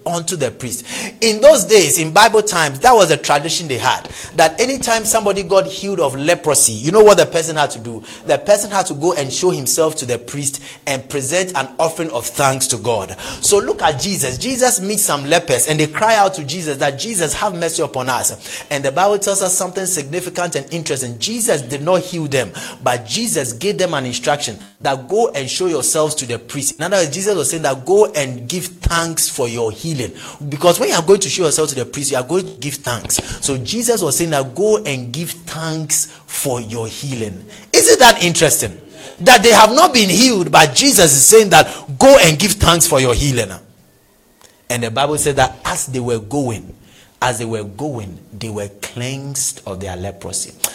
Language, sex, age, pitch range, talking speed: English, male, 30-49, 130-190 Hz, 215 wpm